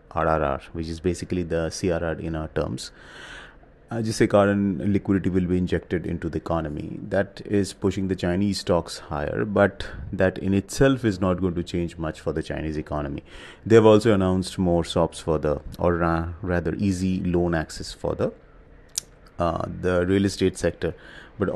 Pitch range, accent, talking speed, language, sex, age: 85-100 Hz, Indian, 170 wpm, English, male, 30-49